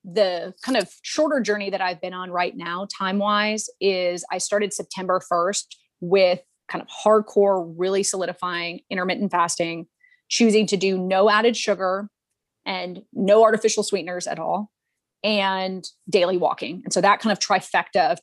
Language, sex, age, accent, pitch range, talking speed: English, female, 30-49, American, 185-215 Hz, 155 wpm